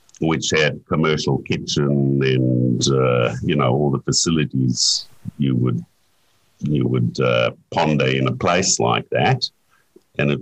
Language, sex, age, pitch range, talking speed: English, male, 60-79, 65-75 Hz, 140 wpm